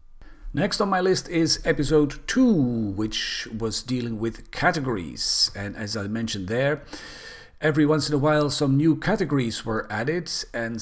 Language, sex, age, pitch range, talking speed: English, male, 40-59, 100-140 Hz, 155 wpm